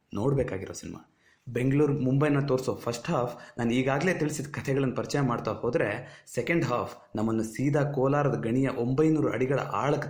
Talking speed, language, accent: 135 wpm, Kannada, native